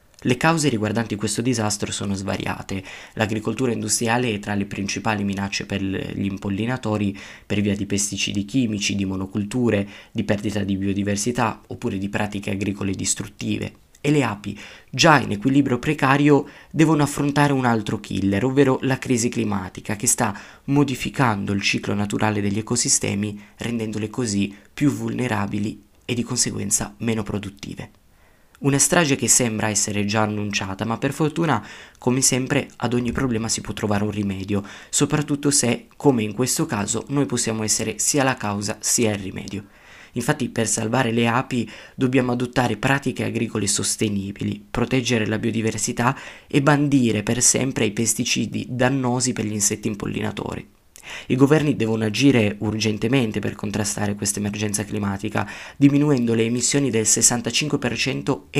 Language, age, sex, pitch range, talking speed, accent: Italian, 20-39, male, 105-125 Hz, 145 wpm, native